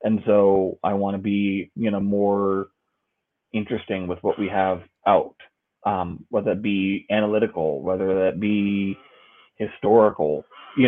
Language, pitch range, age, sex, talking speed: English, 95-110 Hz, 20-39, male, 140 wpm